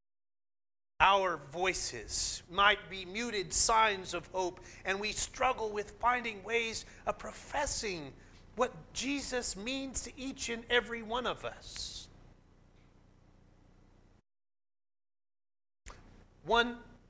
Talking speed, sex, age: 95 wpm, male, 30-49